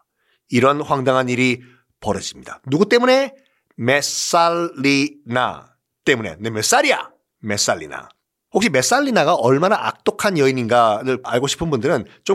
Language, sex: Korean, male